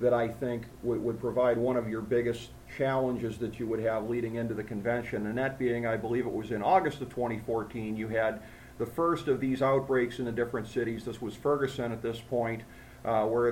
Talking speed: 220 wpm